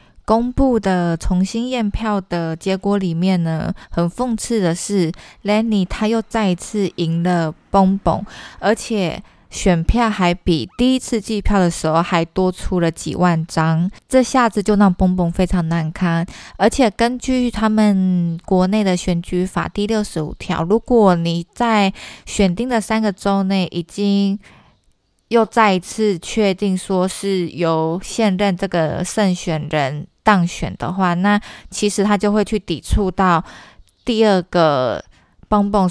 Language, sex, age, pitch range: Chinese, female, 20-39, 170-210 Hz